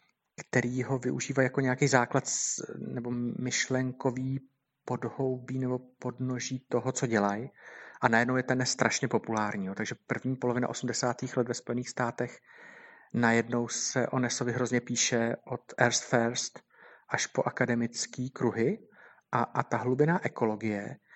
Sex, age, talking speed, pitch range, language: male, 50-69, 130 wpm, 120-130 Hz, Slovak